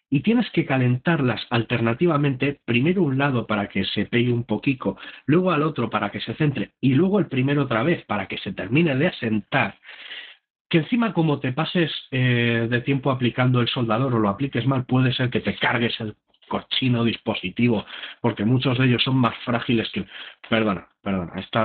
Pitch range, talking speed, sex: 105-150 Hz, 185 wpm, male